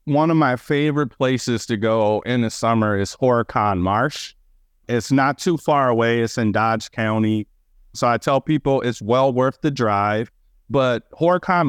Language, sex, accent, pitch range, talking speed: English, male, American, 110-135 Hz, 170 wpm